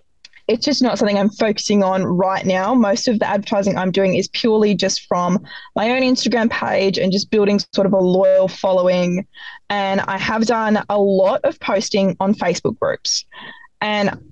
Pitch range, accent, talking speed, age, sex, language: 190-230 Hz, Australian, 180 wpm, 20-39, female, English